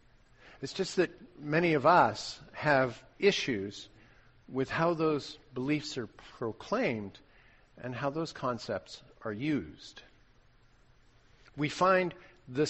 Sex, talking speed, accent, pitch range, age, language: male, 110 wpm, American, 125-155 Hz, 50-69, English